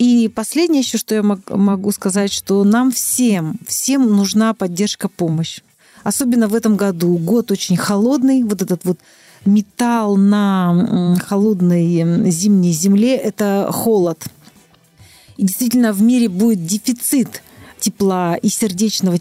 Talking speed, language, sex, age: 125 wpm, Russian, female, 40-59